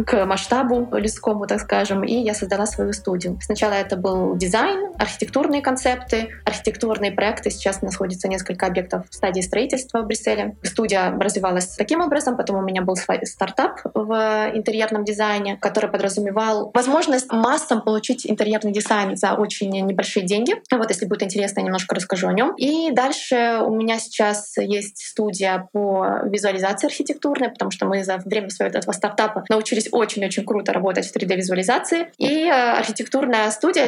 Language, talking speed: Russian, 155 wpm